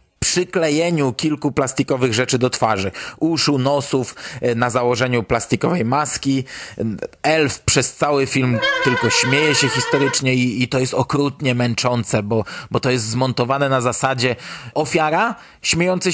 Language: Polish